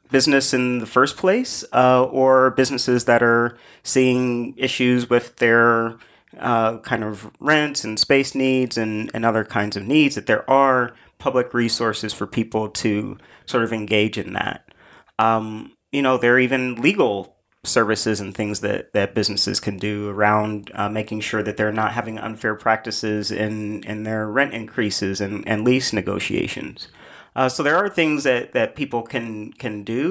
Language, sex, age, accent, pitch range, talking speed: English, male, 30-49, American, 110-130 Hz, 170 wpm